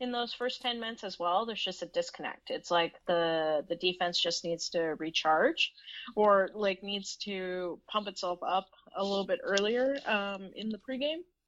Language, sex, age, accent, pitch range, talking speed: English, female, 30-49, American, 165-215 Hz, 185 wpm